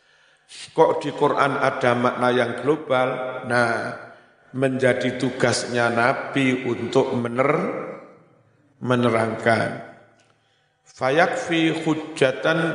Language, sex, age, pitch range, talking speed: Indonesian, male, 50-69, 120-150 Hz, 75 wpm